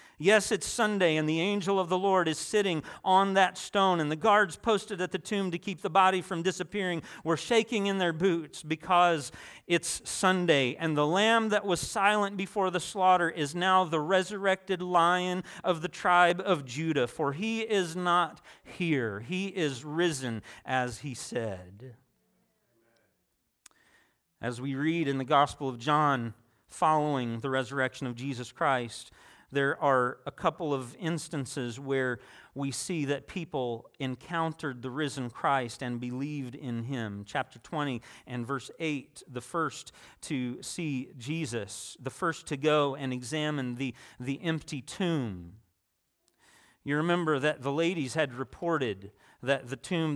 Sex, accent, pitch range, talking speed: male, American, 130-180 Hz, 155 wpm